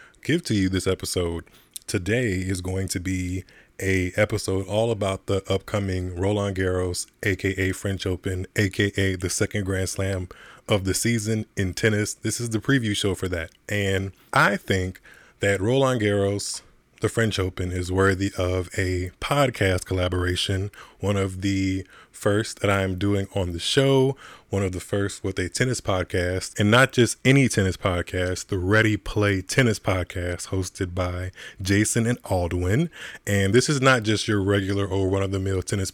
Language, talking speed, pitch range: English, 165 wpm, 95-110 Hz